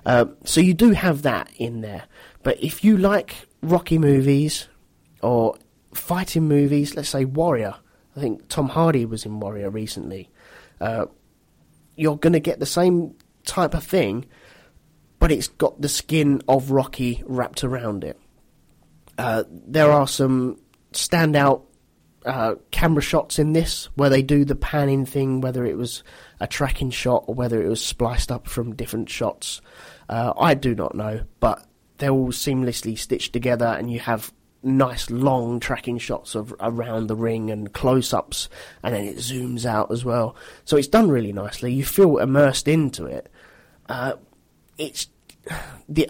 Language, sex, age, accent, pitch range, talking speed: English, male, 30-49, British, 120-150 Hz, 165 wpm